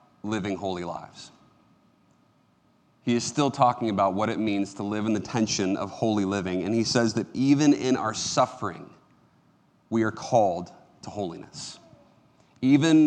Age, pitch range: 30-49, 115-140 Hz